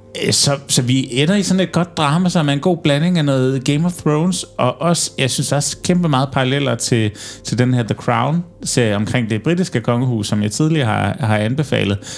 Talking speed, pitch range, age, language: 205 wpm, 105-130 Hz, 30-49, Danish